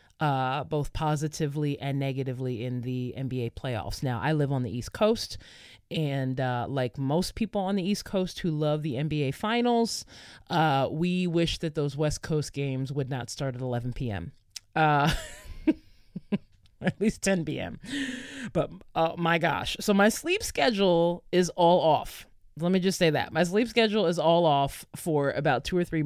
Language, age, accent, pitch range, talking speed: English, 20-39, American, 125-170 Hz, 175 wpm